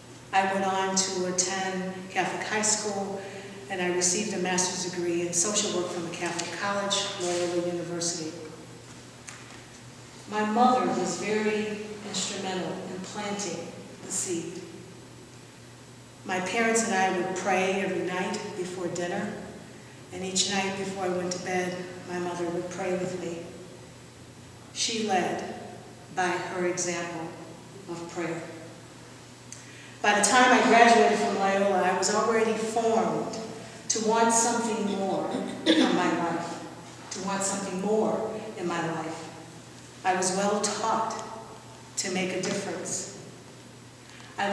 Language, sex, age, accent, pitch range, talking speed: English, female, 50-69, American, 175-210 Hz, 130 wpm